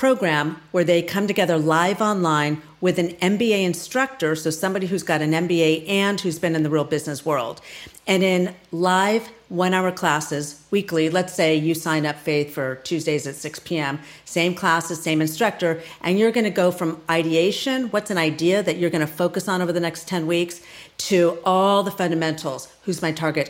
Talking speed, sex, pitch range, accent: 190 wpm, female, 160-205 Hz, American